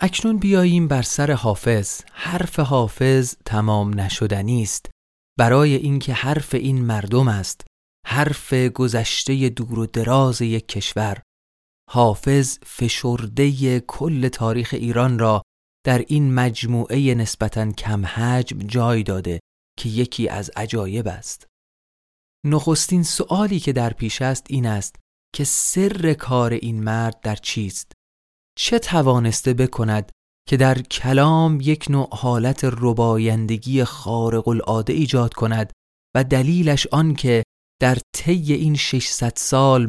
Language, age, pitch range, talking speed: Persian, 30-49, 110-140 Hz, 120 wpm